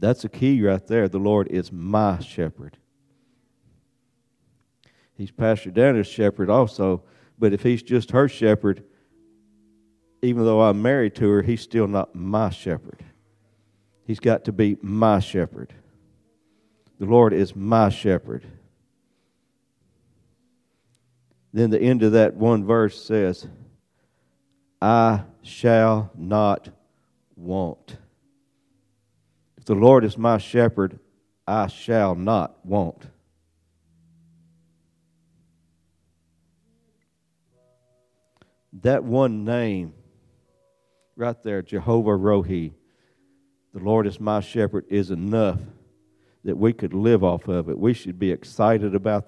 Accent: American